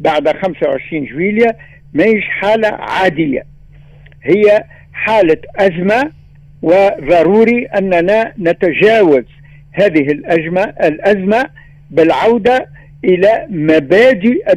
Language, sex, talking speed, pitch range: Arabic, male, 70 wpm, 145-230 Hz